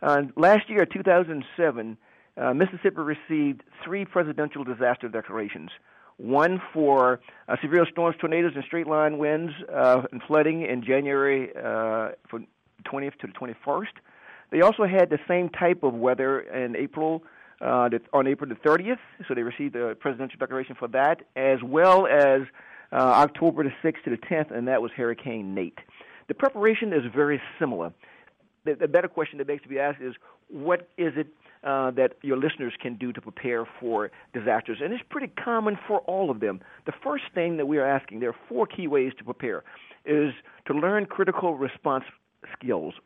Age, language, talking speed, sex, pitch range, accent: 50-69, English, 175 wpm, male, 125-175 Hz, American